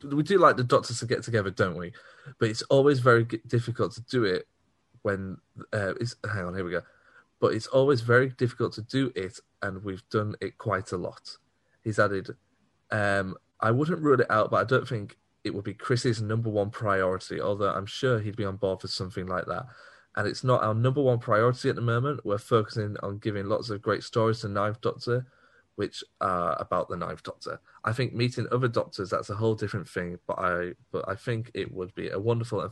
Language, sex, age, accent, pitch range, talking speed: English, male, 30-49, British, 100-125 Hz, 220 wpm